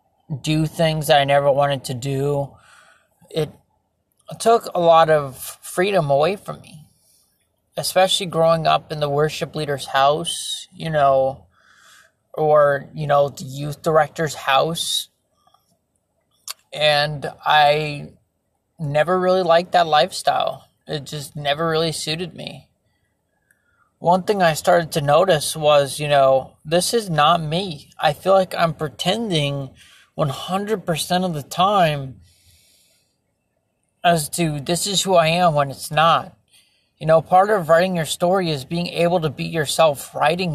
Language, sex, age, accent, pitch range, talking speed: English, male, 30-49, American, 140-170 Hz, 135 wpm